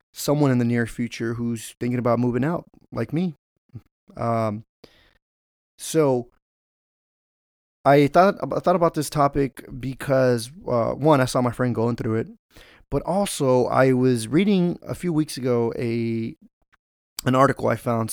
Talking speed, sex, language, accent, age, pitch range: 150 wpm, male, English, American, 30-49, 110-135 Hz